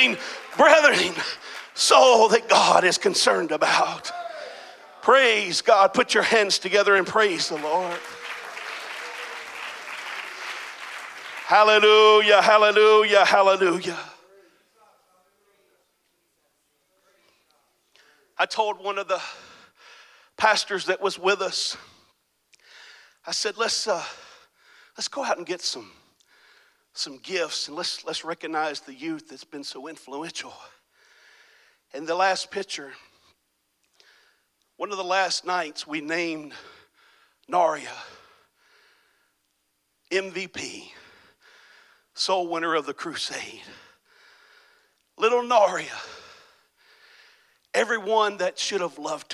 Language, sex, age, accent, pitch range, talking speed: English, male, 40-59, American, 170-220 Hz, 95 wpm